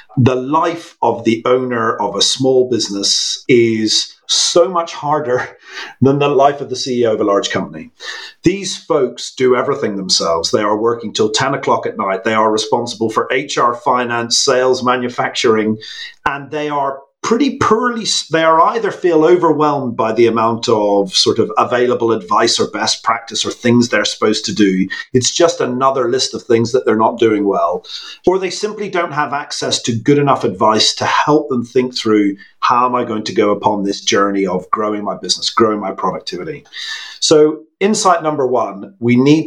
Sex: male